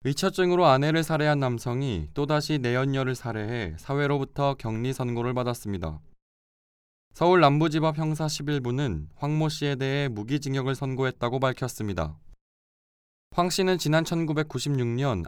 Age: 20-39